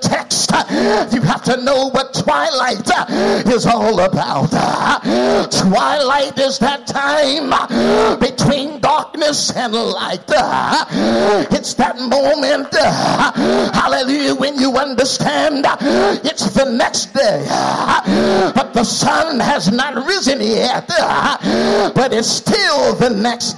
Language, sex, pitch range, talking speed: English, male, 220-275 Hz, 105 wpm